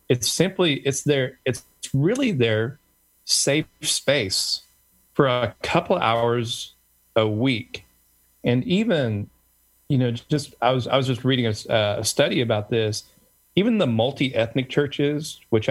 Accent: American